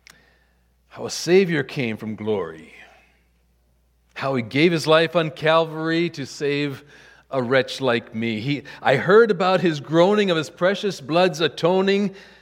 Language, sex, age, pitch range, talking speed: English, male, 50-69, 115-190 Hz, 140 wpm